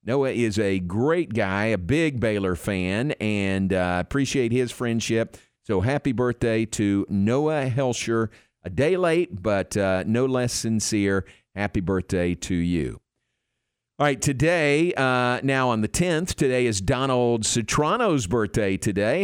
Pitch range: 95-125 Hz